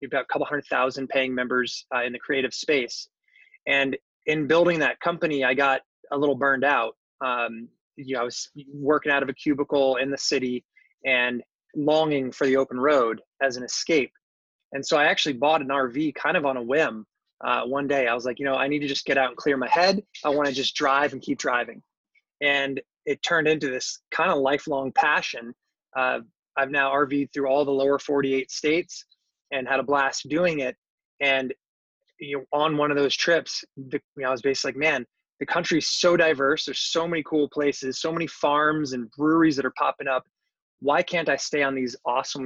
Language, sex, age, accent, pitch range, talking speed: English, male, 20-39, American, 135-155 Hz, 215 wpm